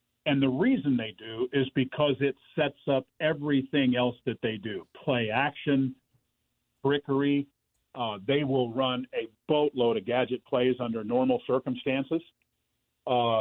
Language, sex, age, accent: English, male, 50-69, American